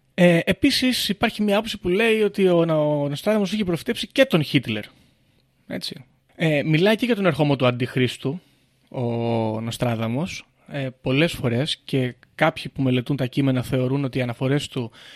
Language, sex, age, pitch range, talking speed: Greek, male, 30-49, 130-165 Hz, 165 wpm